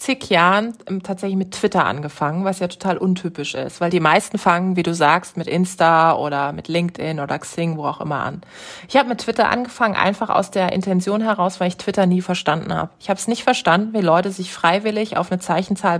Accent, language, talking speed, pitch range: German, German, 215 wpm, 175-215 Hz